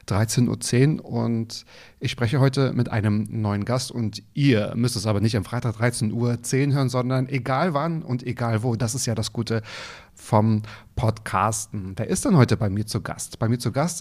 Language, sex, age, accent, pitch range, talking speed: German, male, 30-49, German, 110-135 Hz, 195 wpm